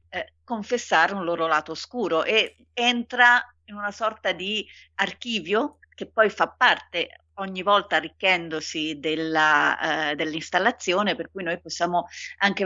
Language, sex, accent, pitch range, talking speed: Italian, female, native, 165-205 Hz, 130 wpm